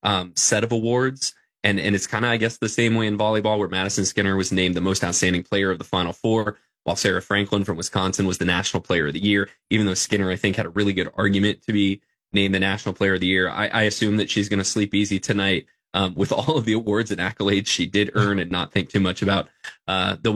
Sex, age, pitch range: male, 20-39, 95-110 Hz